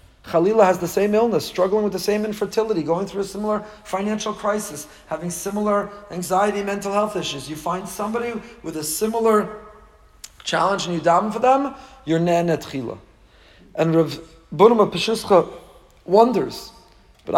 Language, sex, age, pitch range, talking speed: English, male, 40-59, 150-210 Hz, 140 wpm